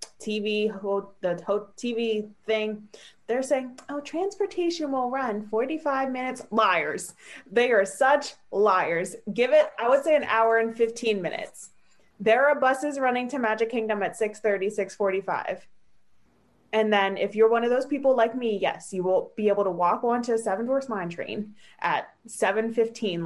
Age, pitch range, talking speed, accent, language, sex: 20-39, 200-245 Hz, 155 wpm, American, English, female